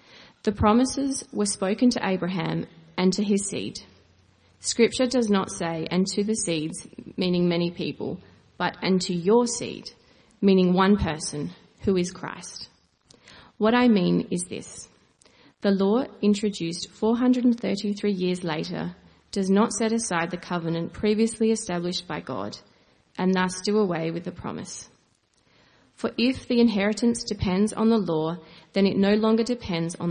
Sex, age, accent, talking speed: female, 30-49, Australian, 145 wpm